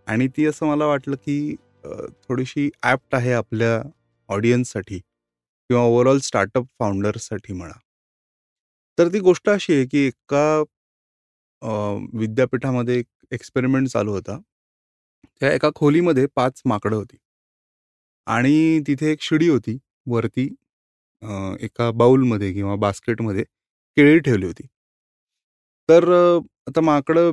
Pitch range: 110-145 Hz